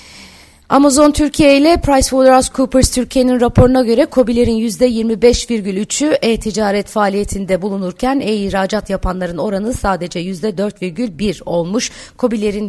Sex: female